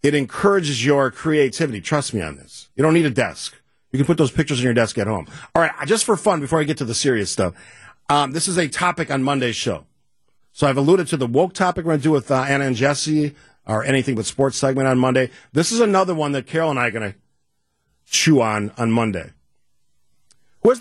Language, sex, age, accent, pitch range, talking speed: English, male, 50-69, American, 105-160 Hz, 235 wpm